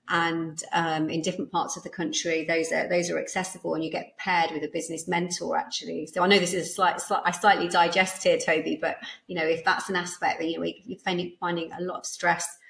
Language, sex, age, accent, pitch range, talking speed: English, female, 30-49, British, 165-205 Hz, 240 wpm